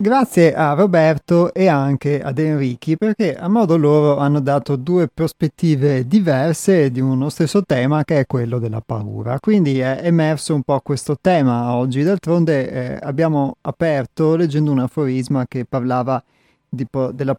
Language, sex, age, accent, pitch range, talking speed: Italian, male, 30-49, native, 130-160 Hz, 155 wpm